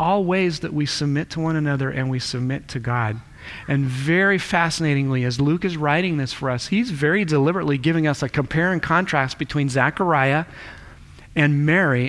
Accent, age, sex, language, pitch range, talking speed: American, 40-59, male, English, 140-200 Hz, 180 wpm